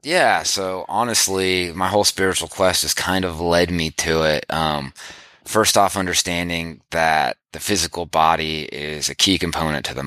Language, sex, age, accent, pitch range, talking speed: English, male, 20-39, American, 75-90 Hz, 165 wpm